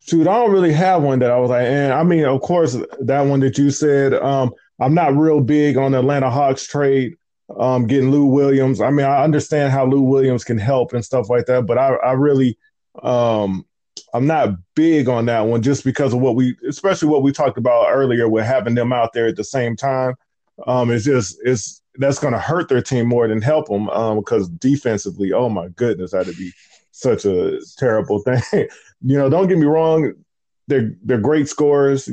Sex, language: male, English